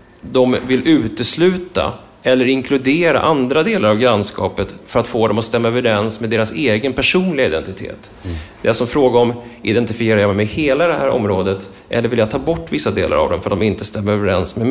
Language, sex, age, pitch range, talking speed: English, male, 30-49, 110-125 Hz, 205 wpm